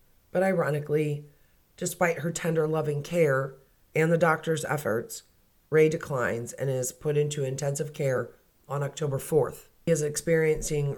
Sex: female